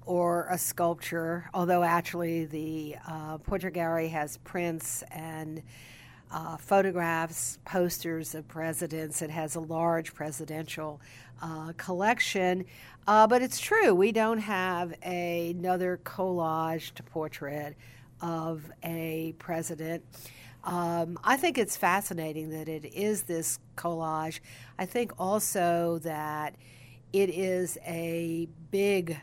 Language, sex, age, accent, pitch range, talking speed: English, female, 50-69, American, 150-180 Hz, 115 wpm